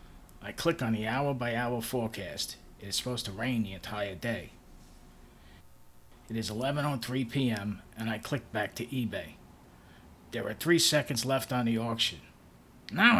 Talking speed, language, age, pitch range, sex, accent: 150 wpm, English, 40-59, 90-130 Hz, male, American